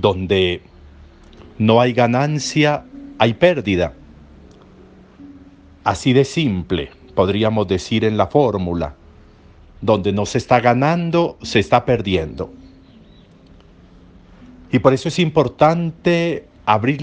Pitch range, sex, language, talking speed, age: 95-140 Hz, male, Spanish, 100 wpm, 50-69